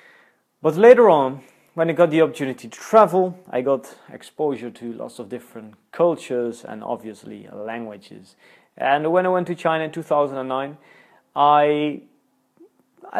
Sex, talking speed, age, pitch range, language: male, 130 wpm, 30-49, 115-165 Hz, English